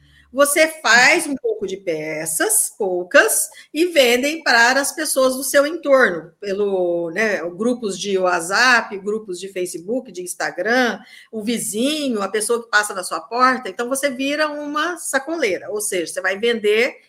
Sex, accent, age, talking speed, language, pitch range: female, Brazilian, 50-69, 155 wpm, Portuguese, 215-310 Hz